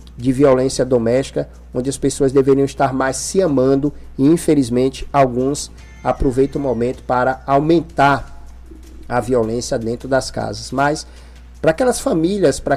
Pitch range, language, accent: 125-145 Hz, Portuguese, Brazilian